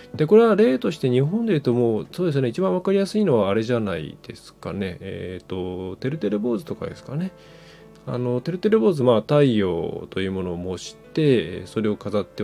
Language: Japanese